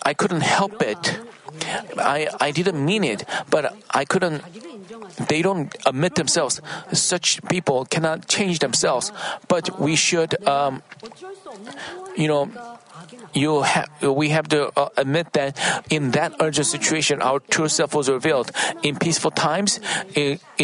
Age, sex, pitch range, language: 40-59, male, 145-185 Hz, Korean